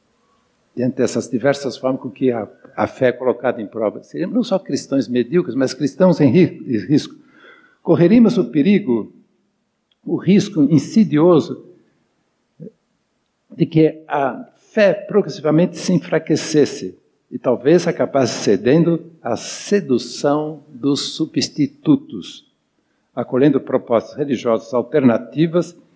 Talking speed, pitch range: 105 wpm, 125-165 Hz